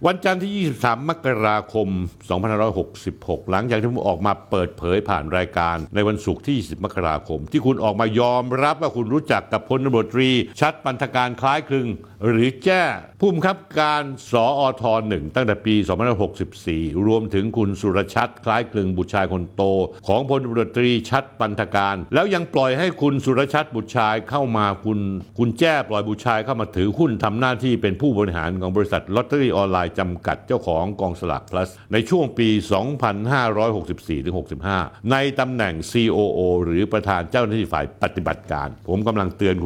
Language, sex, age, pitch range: Thai, male, 60-79, 95-135 Hz